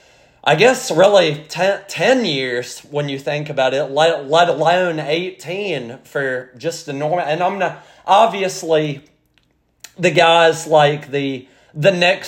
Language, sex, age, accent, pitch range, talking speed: English, male, 30-49, American, 140-180 Hz, 140 wpm